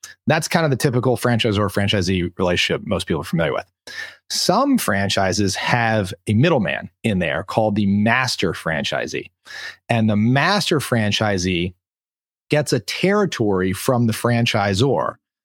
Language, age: English, 30-49